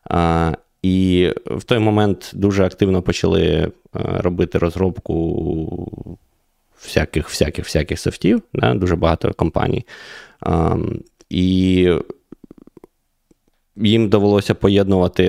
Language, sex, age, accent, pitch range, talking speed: Ukrainian, male, 20-39, native, 90-105 Hz, 80 wpm